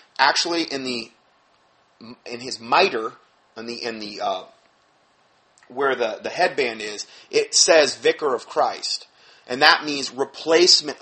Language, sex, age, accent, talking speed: English, male, 30-49, American, 135 wpm